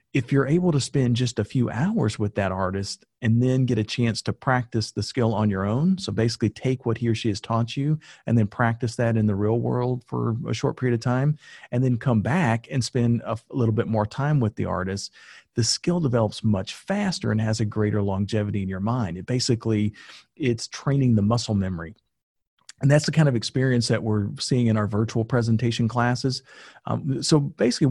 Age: 40-59